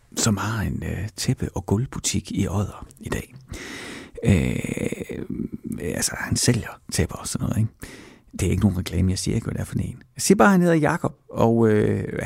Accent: native